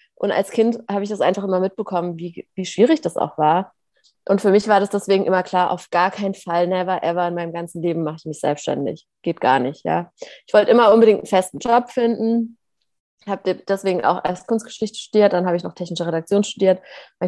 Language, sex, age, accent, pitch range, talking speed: German, female, 30-49, German, 185-225 Hz, 220 wpm